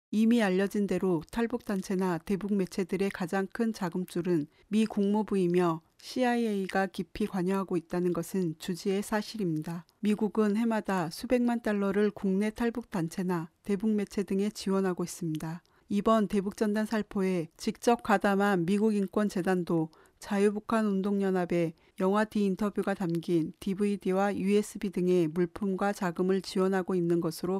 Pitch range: 180-210 Hz